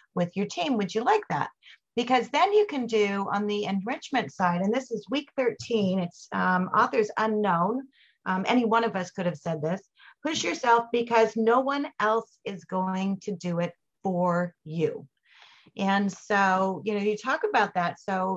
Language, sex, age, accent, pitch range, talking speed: English, female, 40-59, American, 185-240 Hz, 185 wpm